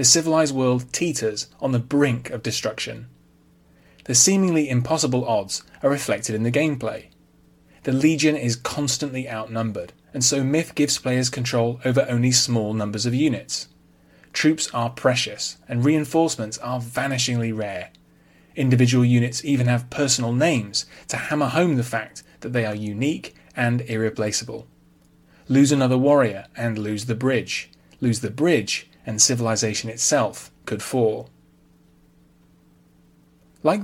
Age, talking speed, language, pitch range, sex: 30-49, 135 wpm, English, 110-145 Hz, male